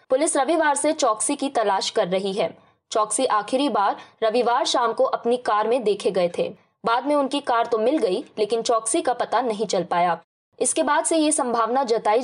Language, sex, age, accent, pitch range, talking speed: Hindi, female, 20-39, native, 210-265 Hz, 200 wpm